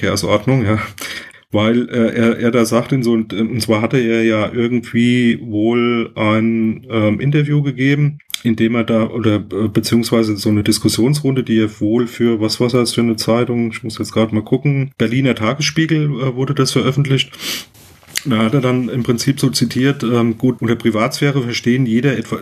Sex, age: male, 40-59